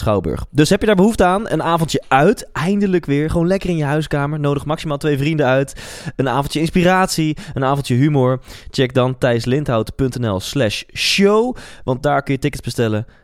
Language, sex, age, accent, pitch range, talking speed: Dutch, male, 20-39, Dutch, 105-155 Hz, 170 wpm